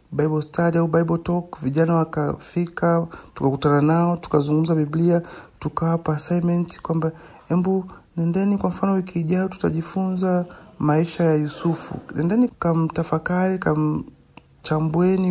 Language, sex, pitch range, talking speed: Swahili, male, 145-170 Hz, 105 wpm